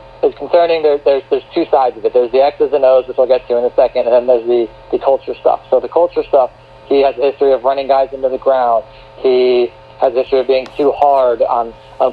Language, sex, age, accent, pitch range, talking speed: English, male, 40-59, American, 120-140 Hz, 255 wpm